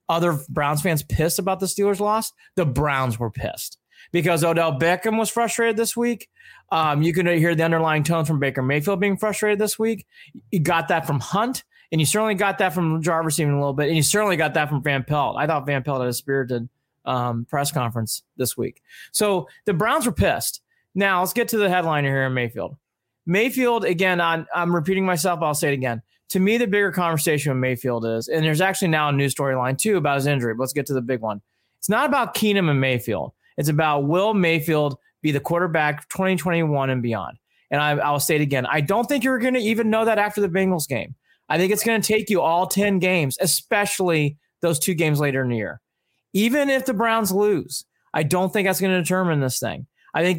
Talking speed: 225 wpm